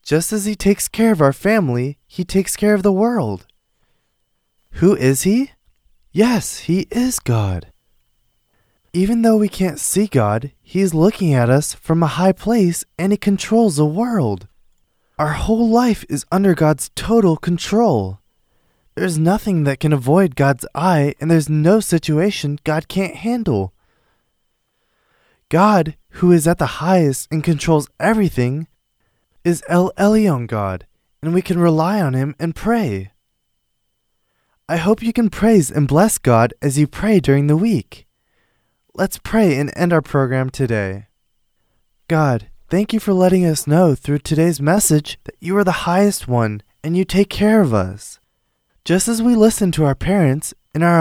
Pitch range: 135-195 Hz